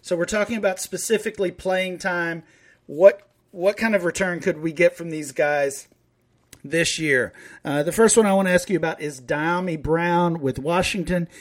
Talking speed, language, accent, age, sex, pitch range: 185 wpm, English, American, 40-59, male, 145-185 Hz